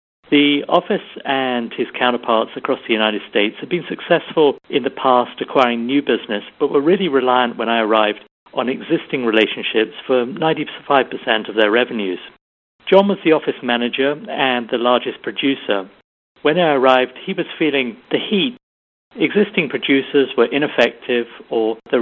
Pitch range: 115-140 Hz